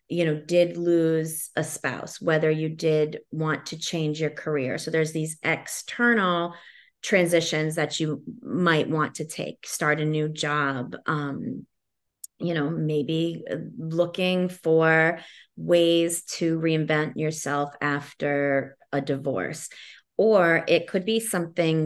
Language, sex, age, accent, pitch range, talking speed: English, female, 30-49, American, 145-165 Hz, 130 wpm